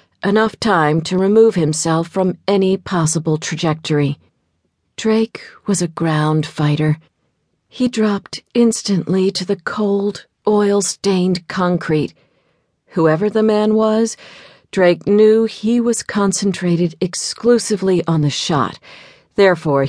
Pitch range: 160-210 Hz